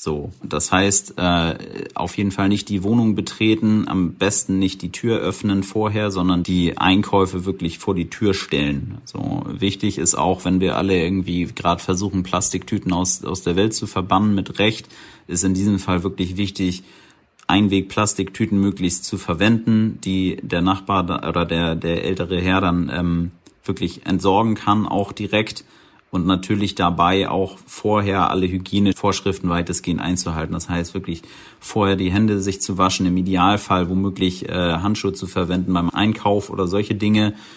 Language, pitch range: German, 90-100 Hz